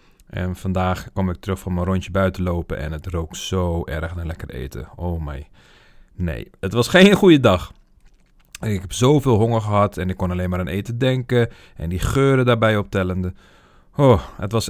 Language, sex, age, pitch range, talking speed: Dutch, male, 40-59, 90-110 Hz, 190 wpm